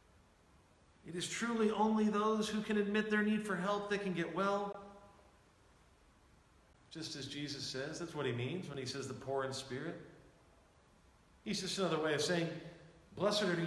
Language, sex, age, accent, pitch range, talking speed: English, male, 40-59, American, 125-190 Hz, 170 wpm